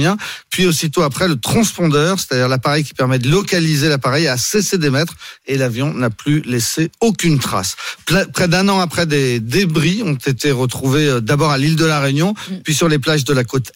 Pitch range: 135-170 Hz